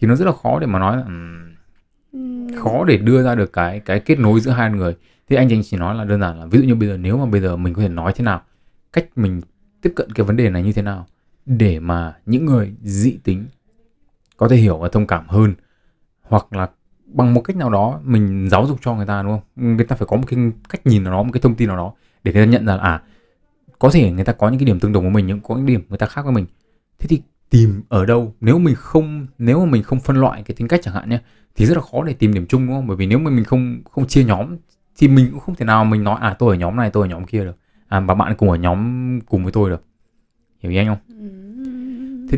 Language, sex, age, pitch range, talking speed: Vietnamese, male, 20-39, 95-125 Hz, 285 wpm